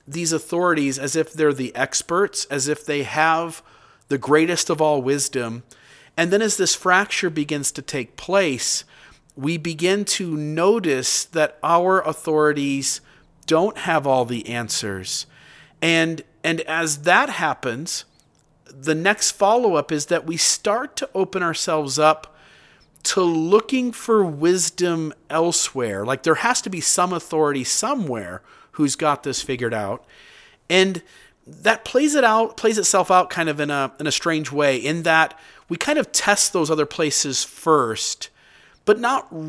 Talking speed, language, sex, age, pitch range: 150 wpm, English, male, 40-59, 140-180 Hz